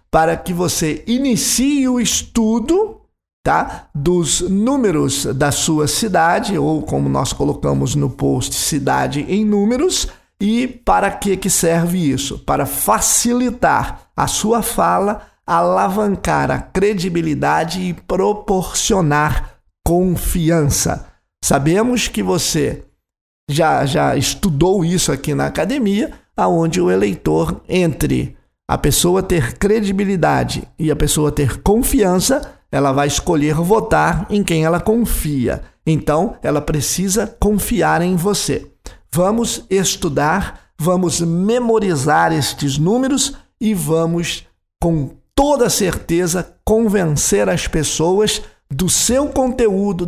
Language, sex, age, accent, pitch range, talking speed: Portuguese, male, 50-69, Brazilian, 155-215 Hz, 110 wpm